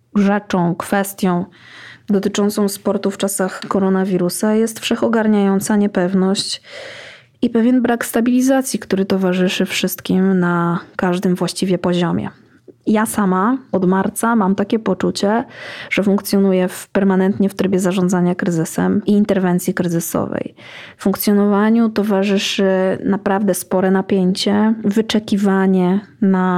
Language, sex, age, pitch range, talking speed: Polish, female, 20-39, 185-210 Hz, 105 wpm